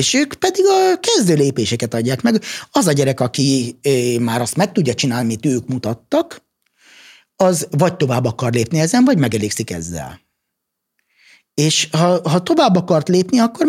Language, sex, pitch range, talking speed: Hungarian, male, 125-165 Hz, 160 wpm